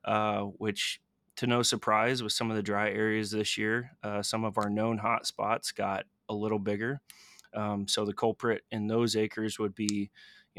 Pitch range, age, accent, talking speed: 105-115 Hz, 20-39, American, 195 wpm